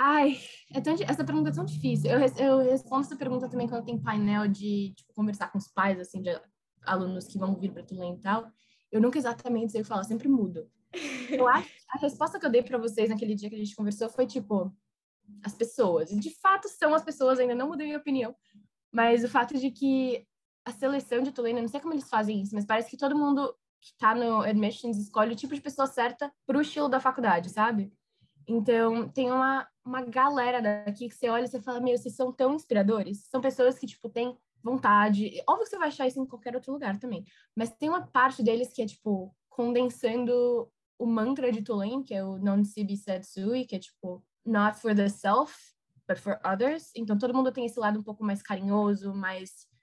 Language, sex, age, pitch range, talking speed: Portuguese, female, 10-29, 205-260 Hz, 215 wpm